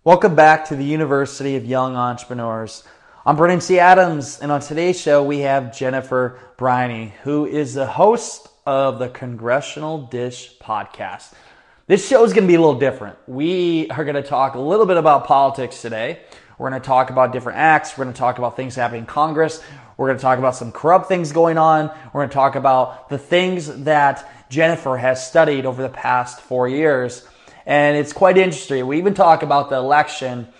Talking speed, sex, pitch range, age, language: 190 wpm, male, 130-155 Hz, 20-39, English